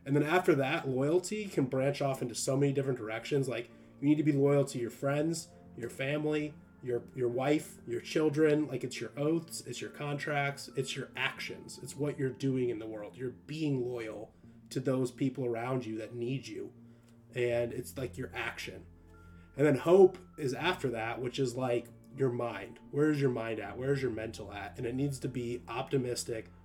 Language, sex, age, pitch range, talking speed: English, male, 30-49, 115-140 Hz, 195 wpm